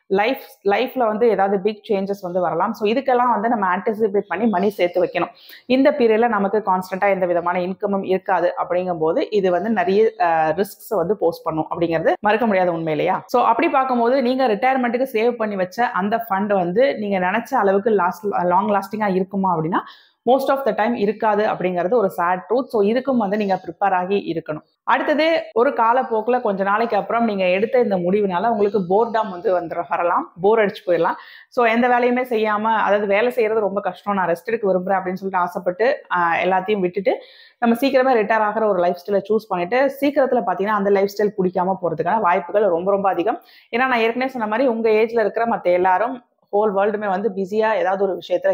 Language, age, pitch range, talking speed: Tamil, 30-49, 185-230 Hz, 175 wpm